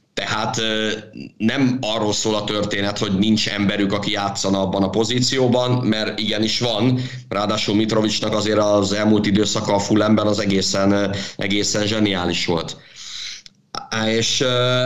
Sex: male